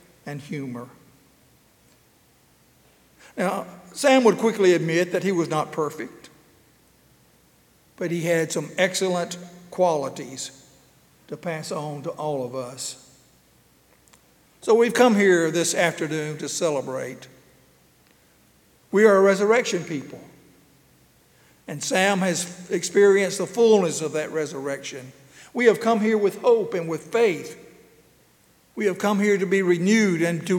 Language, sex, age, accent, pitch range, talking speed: English, male, 60-79, American, 150-190 Hz, 130 wpm